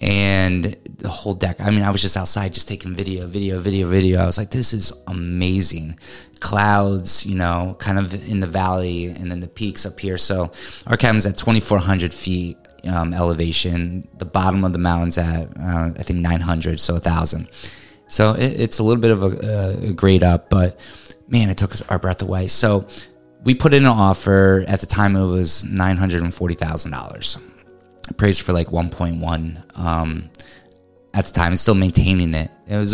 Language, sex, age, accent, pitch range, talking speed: English, male, 30-49, American, 85-100 Hz, 195 wpm